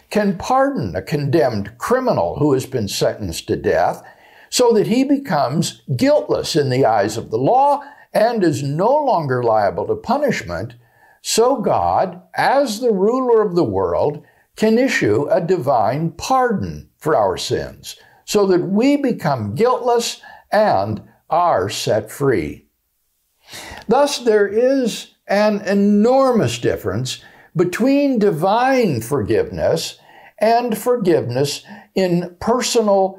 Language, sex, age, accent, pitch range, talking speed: English, male, 60-79, American, 175-260 Hz, 120 wpm